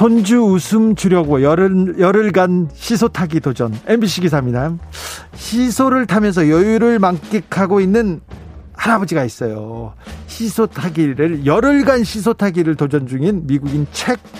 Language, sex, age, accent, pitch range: Korean, male, 40-59, native, 135-215 Hz